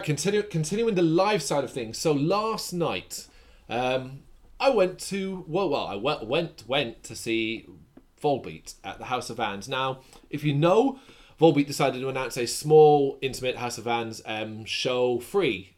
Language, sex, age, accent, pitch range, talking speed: English, male, 30-49, British, 115-150 Hz, 170 wpm